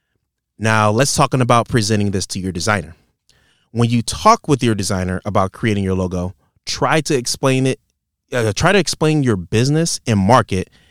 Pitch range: 100-130 Hz